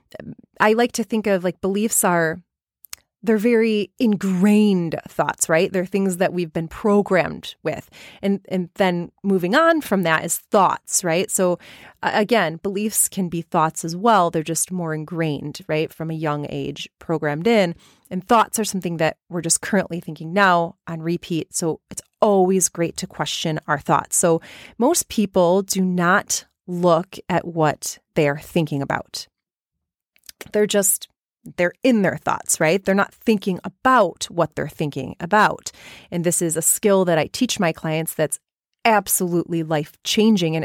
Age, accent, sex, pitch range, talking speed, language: 30-49, American, female, 160-205 Hz, 160 wpm, English